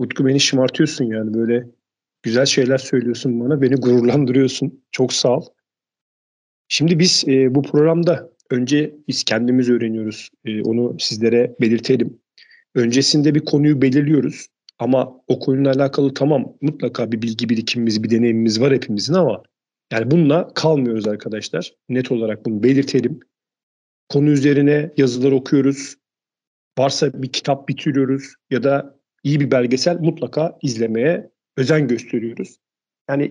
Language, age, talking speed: Turkish, 40-59, 125 wpm